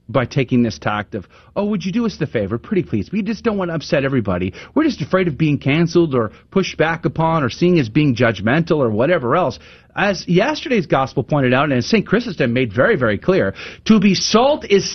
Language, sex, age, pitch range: English, male, 40-59, 115-180 Hz